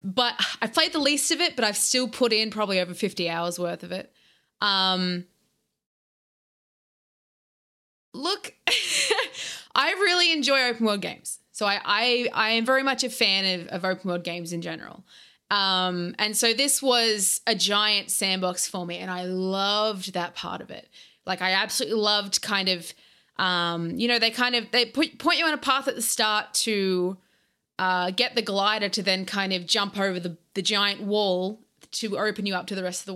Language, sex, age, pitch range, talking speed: English, female, 20-39, 190-230 Hz, 190 wpm